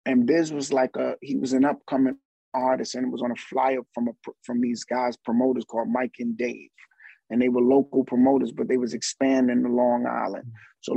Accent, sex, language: American, male, English